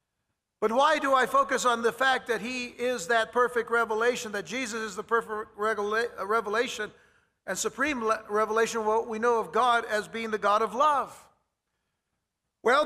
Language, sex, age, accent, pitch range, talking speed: English, male, 60-79, American, 220-260 Hz, 170 wpm